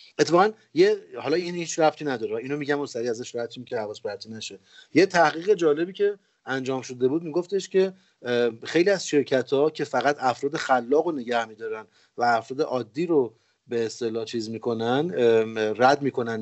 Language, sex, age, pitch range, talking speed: Persian, male, 40-59, 120-170 Hz, 165 wpm